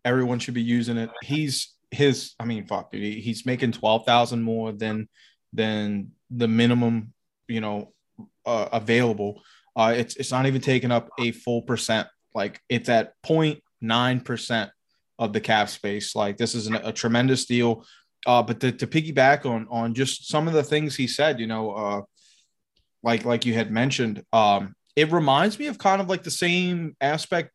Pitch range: 115-135 Hz